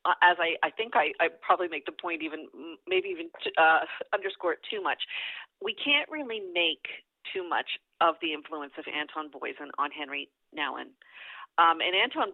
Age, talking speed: 40-59, 175 wpm